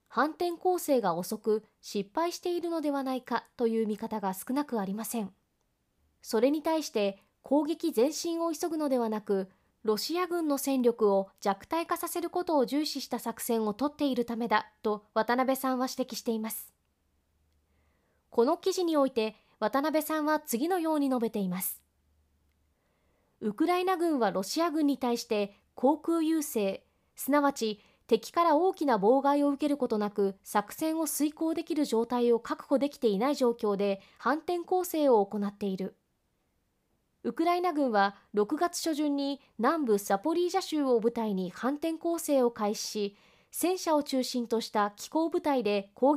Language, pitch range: Japanese, 215-310 Hz